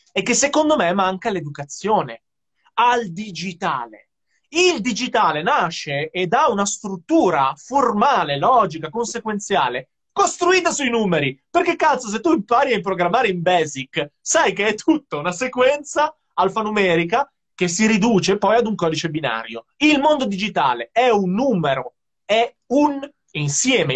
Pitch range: 160-235 Hz